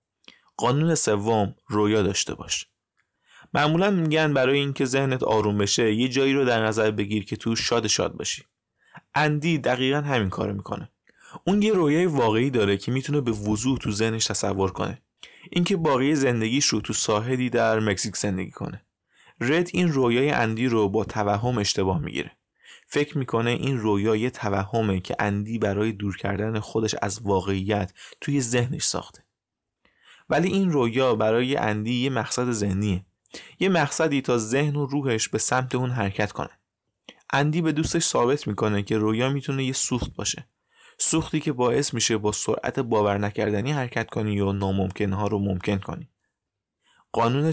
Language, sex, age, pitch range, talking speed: Persian, male, 20-39, 105-140 Hz, 155 wpm